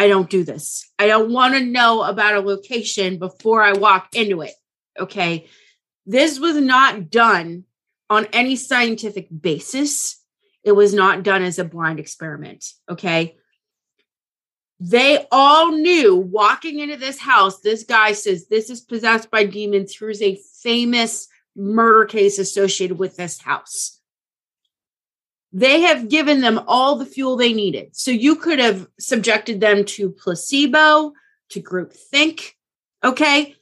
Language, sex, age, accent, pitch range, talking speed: English, female, 30-49, American, 200-280 Hz, 145 wpm